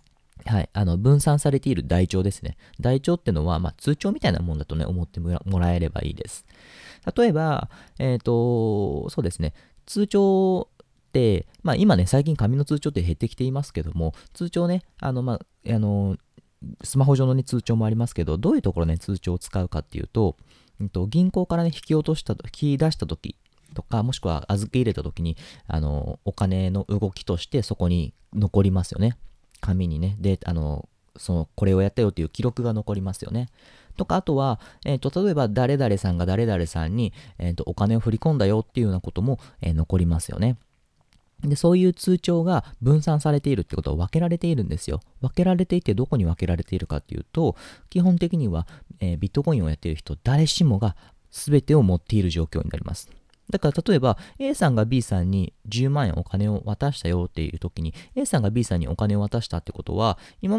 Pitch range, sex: 85-135 Hz, male